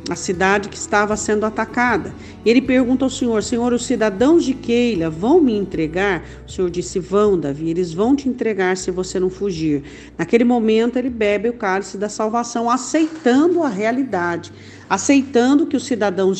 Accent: Brazilian